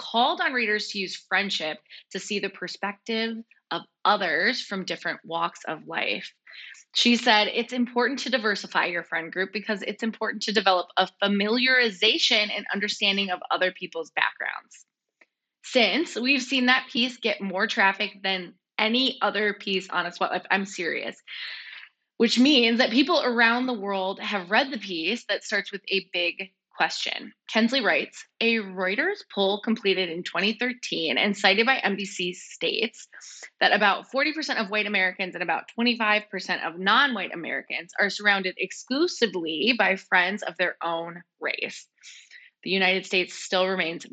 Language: English